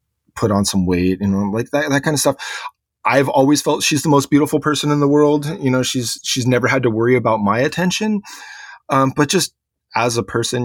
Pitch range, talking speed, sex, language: 100-125 Hz, 220 wpm, male, English